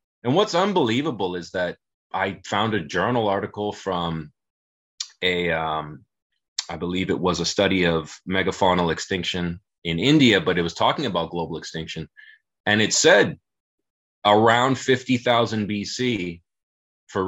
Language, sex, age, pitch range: English, male, 20-39, 85-115 Hz